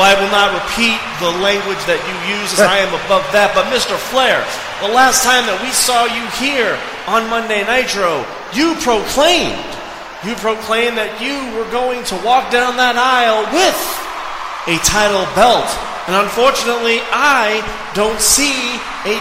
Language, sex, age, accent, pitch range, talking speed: English, male, 30-49, American, 205-255 Hz, 160 wpm